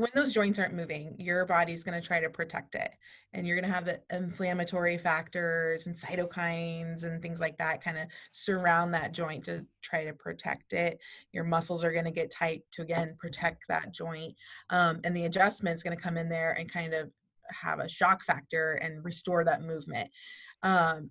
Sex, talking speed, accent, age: female, 200 wpm, American, 20-39